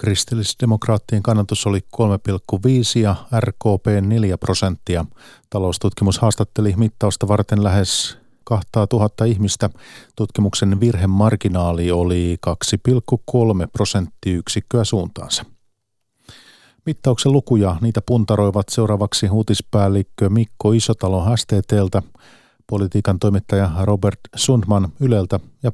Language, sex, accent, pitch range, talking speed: Finnish, male, native, 100-115 Hz, 85 wpm